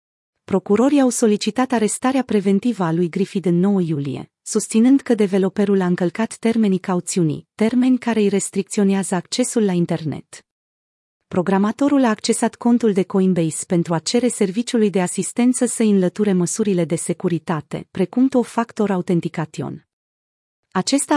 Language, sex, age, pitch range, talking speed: Romanian, female, 30-49, 180-225 Hz, 135 wpm